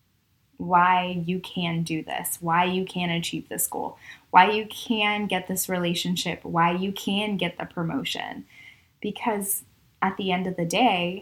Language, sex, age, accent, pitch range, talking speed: English, female, 20-39, American, 170-200 Hz, 160 wpm